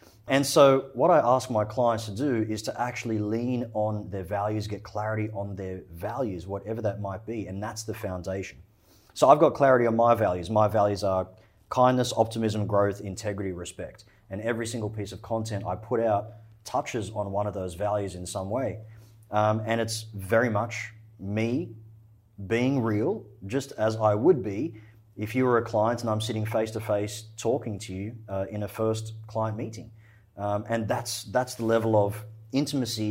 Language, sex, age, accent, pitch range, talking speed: English, male, 30-49, Australian, 100-115 Hz, 185 wpm